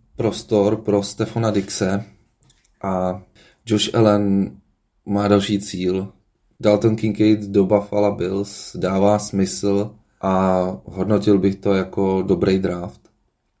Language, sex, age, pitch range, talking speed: Slovak, male, 20-39, 95-105 Hz, 105 wpm